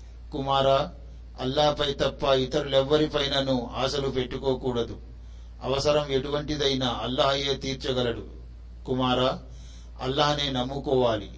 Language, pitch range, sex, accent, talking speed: Telugu, 125-140 Hz, male, native, 70 wpm